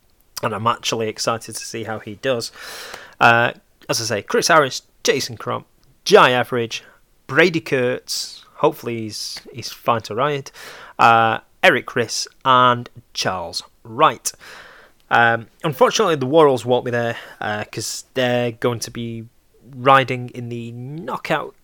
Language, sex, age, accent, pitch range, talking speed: English, male, 20-39, British, 115-135 Hz, 140 wpm